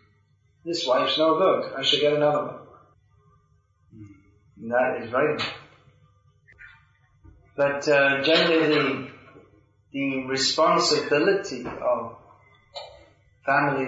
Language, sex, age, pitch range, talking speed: English, male, 30-49, 115-145 Hz, 90 wpm